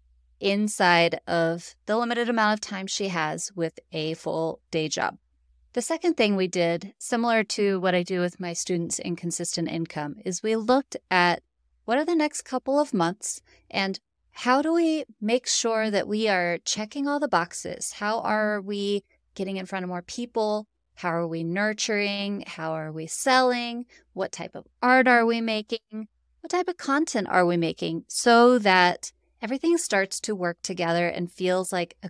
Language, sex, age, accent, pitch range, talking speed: English, female, 30-49, American, 175-230 Hz, 180 wpm